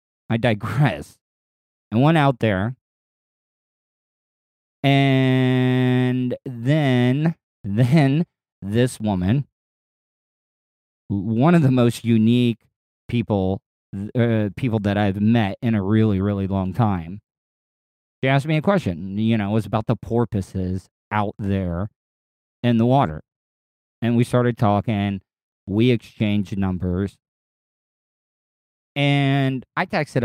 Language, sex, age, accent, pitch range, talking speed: English, male, 40-59, American, 95-125 Hz, 110 wpm